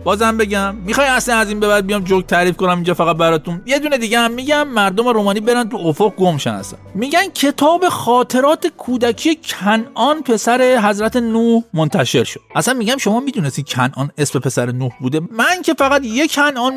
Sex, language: male, Persian